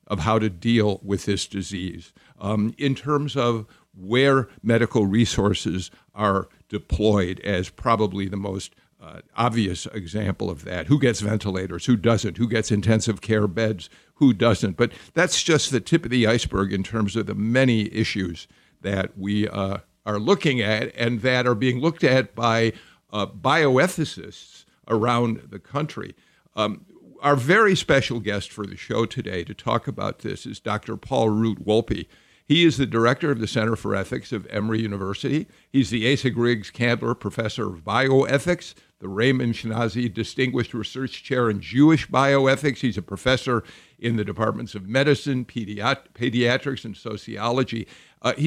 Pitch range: 105-130 Hz